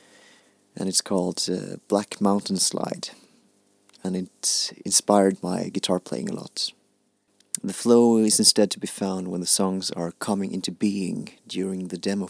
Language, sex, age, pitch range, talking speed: English, male, 30-49, 90-100 Hz, 155 wpm